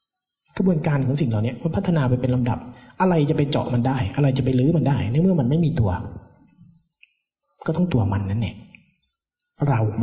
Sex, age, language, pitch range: male, 30-49, Thai, 120-170 Hz